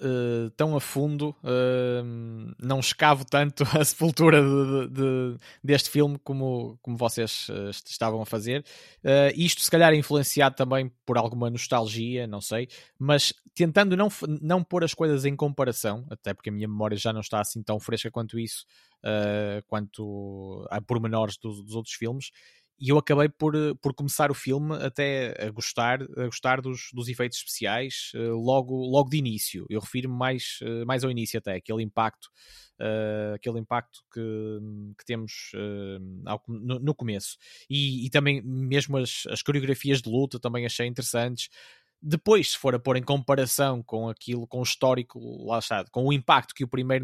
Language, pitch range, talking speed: Portuguese, 115-140 Hz, 165 wpm